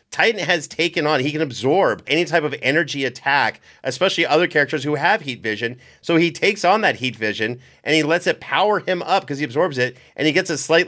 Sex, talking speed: male, 230 wpm